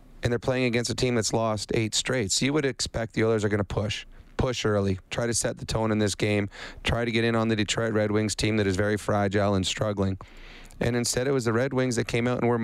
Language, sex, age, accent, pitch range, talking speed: English, male, 30-49, American, 110-125 Hz, 270 wpm